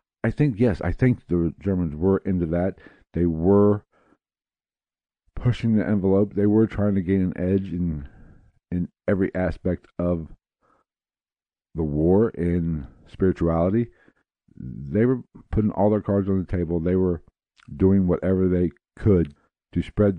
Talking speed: 145 wpm